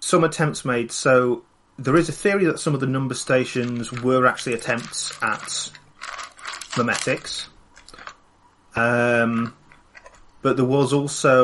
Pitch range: 115-135 Hz